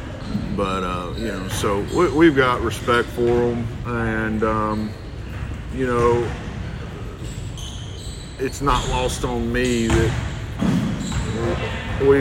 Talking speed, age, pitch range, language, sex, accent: 110 wpm, 40-59, 105-120 Hz, English, male, American